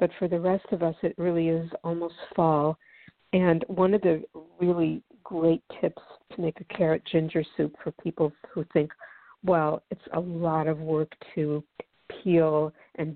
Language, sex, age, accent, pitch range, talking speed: English, female, 60-79, American, 155-185 Hz, 170 wpm